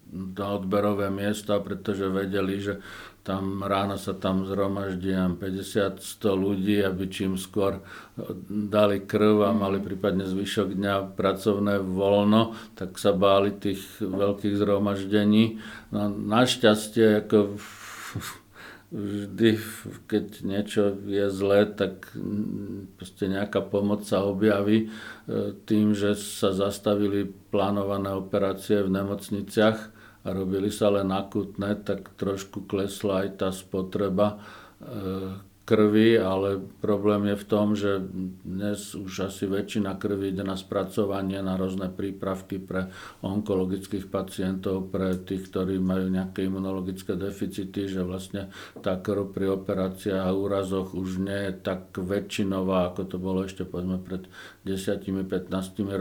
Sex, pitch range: male, 95-105 Hz